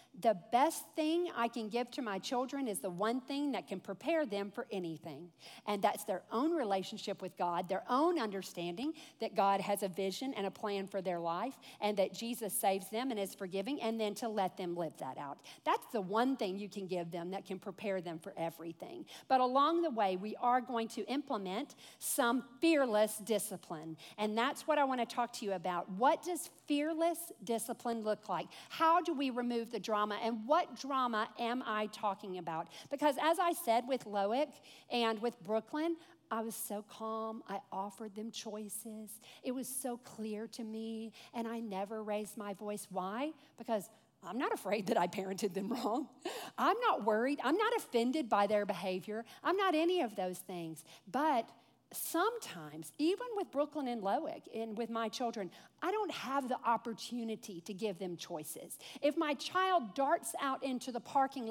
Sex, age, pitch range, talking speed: female, 50-69, 200-290 Hz, 190 wpm